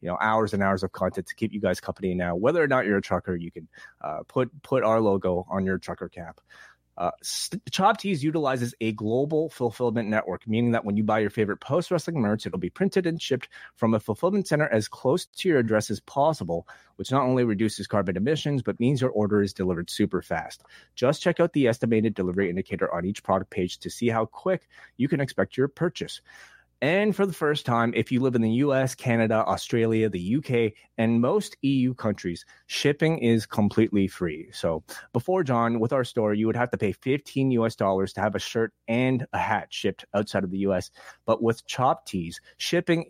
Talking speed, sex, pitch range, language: 210 wpm, male, 100-130 Hz, English